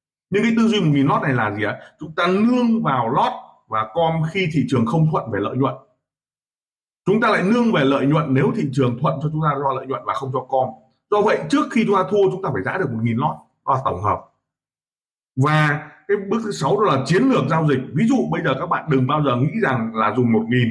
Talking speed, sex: 250 wpm, male